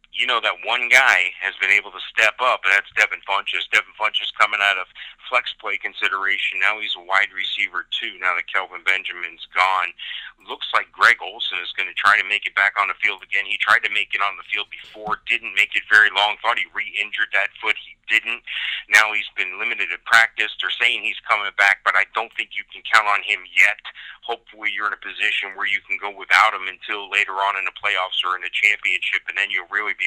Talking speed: 235 wpm